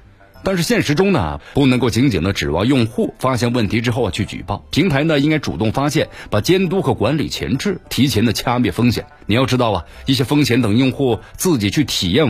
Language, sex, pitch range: Chinese, male, 100-140 Hz